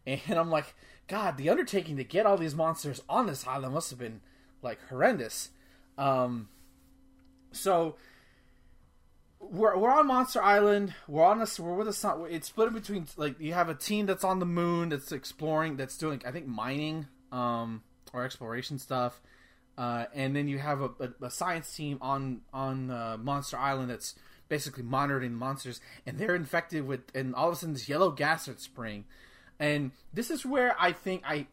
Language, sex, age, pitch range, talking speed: English, male, 20-39, 125-175 Hz, 185 wpm